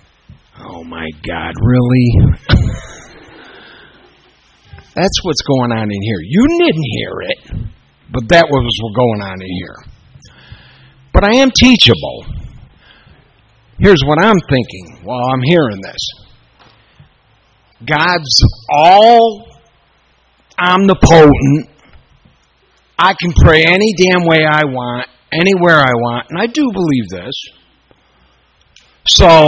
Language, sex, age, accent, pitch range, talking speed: English, male, 60-79, American, 115-170 Hz, 110 wpm